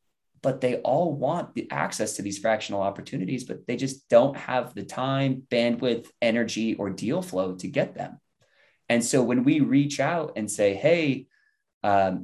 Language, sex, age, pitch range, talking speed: English, male, 20-39, 95-115 Hz, 170 wpm